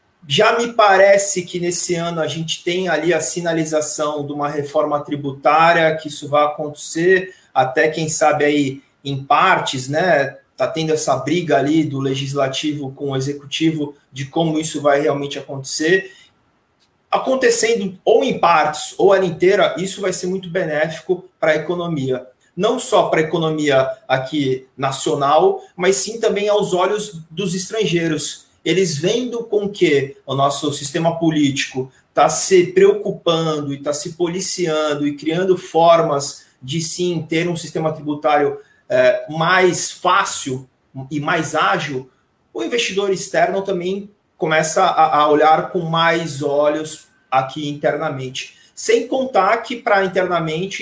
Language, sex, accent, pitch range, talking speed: Portuguese, male, Brazilian, 145-185 Hz, 140 wpm